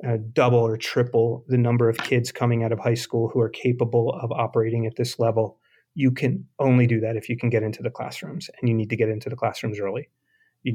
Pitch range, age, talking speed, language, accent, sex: 115-125 Hz, 30-49, 240 wpm, English, American, male